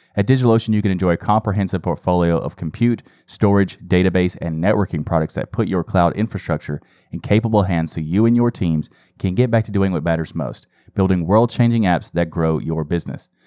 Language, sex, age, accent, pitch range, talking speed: English, male, 30-49, American, 90-110 Hz, 190 wpm